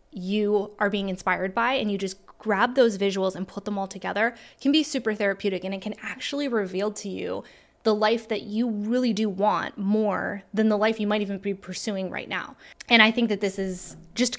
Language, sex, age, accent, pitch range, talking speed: English, female, 10-29, American, 195-240 Hz, 215 wpm